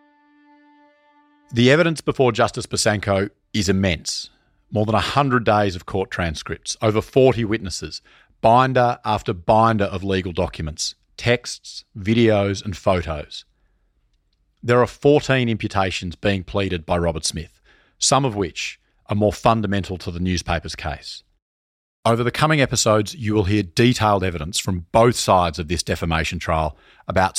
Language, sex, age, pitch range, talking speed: English, male, 40-59, 90-125 Hz, 140 wpm